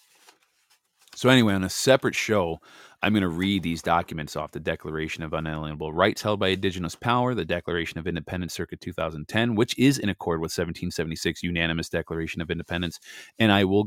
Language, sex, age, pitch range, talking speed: English, male, 30-49, 80-100 Hz, 175 wpm